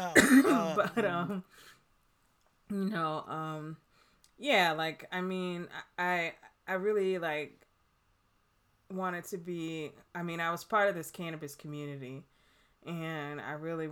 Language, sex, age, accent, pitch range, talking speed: English, female, 20-39, American, 145-170 Hz, 120 wpm